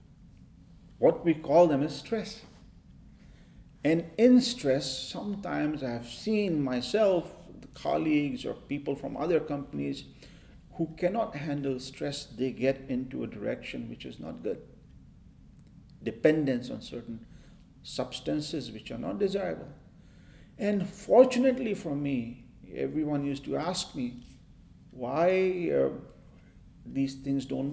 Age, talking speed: 40-59, 120 wpm